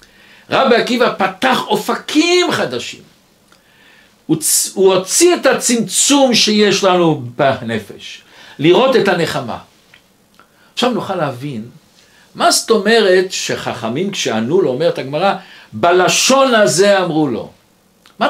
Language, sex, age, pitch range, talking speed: Hebrew, male, 60-79, 155-235 Hz, 110 wpm